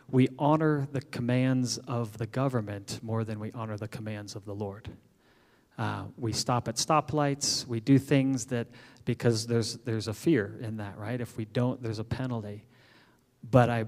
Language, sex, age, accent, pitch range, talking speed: English, male, 40-59, American, 115-135 Hz, 175 wpm